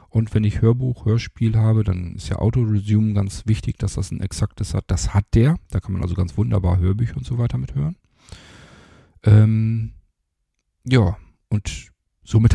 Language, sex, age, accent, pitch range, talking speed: German, male, 40-59, German, 95-110 Hz, 175 wpm